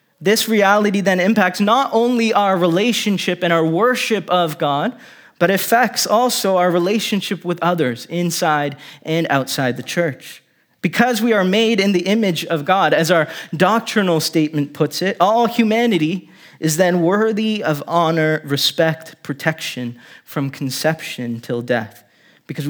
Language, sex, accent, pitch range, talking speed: English, male, American, 145-195 Hz, 145 wpm